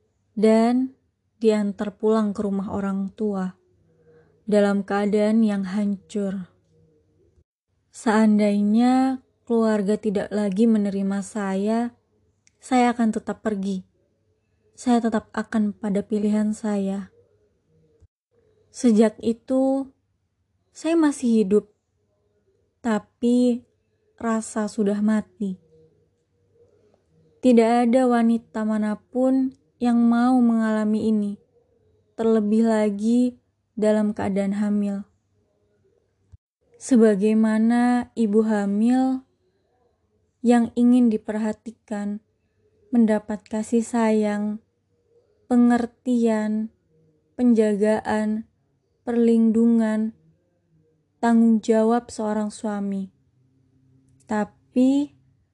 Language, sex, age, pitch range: Indonesian, female, 20-39, 205-235 Hz